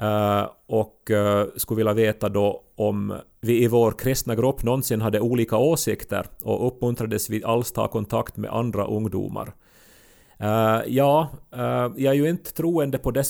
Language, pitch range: Swedish, 105-120 Hz